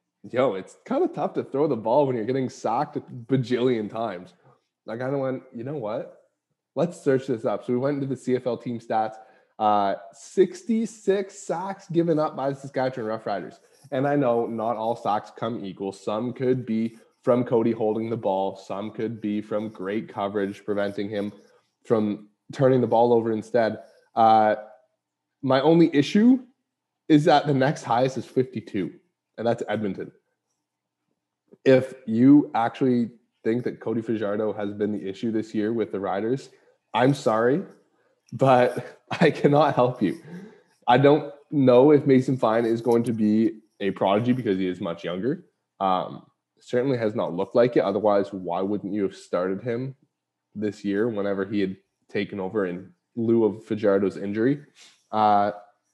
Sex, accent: male, American